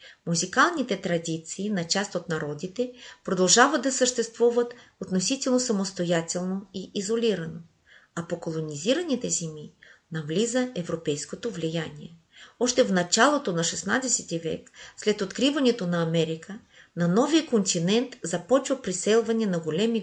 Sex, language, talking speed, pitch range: female, Bulgarian, 110 wpm, 170-230 Hz